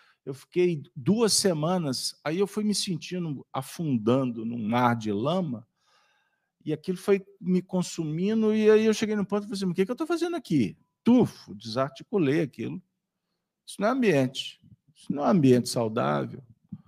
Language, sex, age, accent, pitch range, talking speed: Portuguese, male, 50-69, Brazilian, 135-210 Hz, 170 wpm